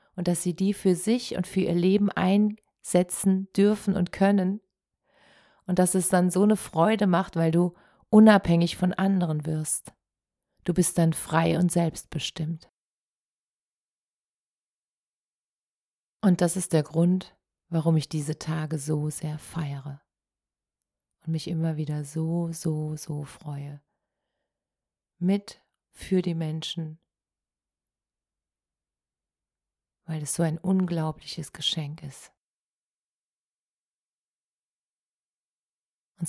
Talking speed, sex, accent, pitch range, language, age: 110 wpm, female, German, 155-185 Hz, German, 30-49